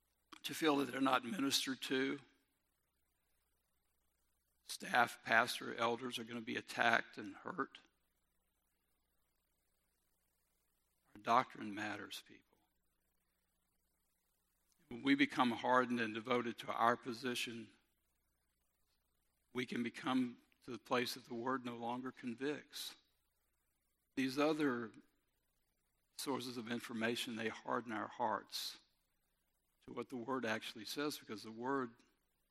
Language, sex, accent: English, male, American